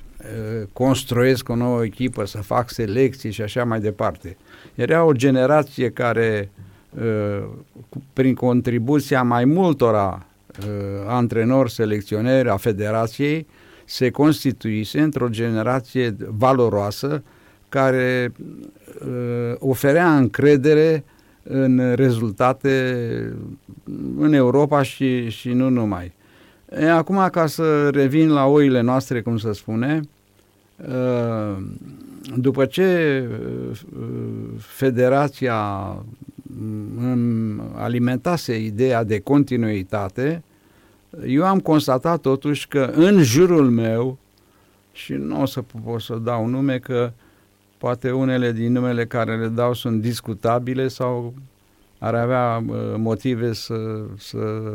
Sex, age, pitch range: male, 50-69, 110-135 Hz